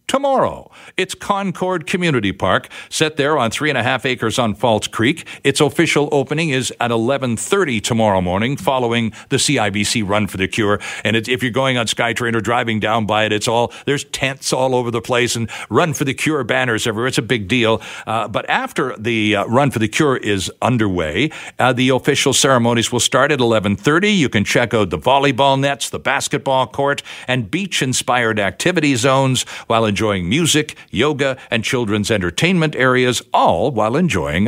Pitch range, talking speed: 110-150 Hz, 185 wpm